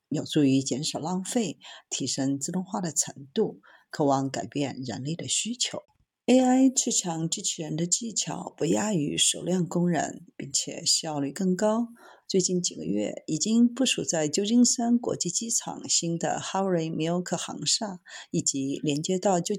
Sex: female